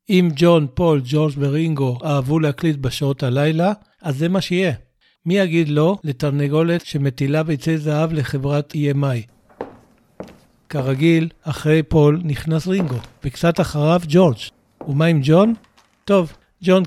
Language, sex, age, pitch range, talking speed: Hebrew, male, 60-79, 140-165 Hz, 125 wpm